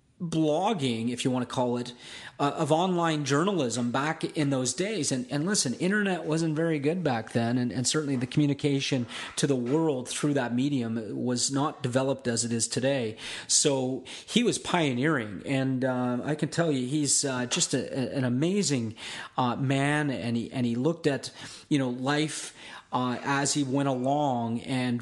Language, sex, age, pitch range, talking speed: English, male, 30-49, 125-150 Hz, 180 wpm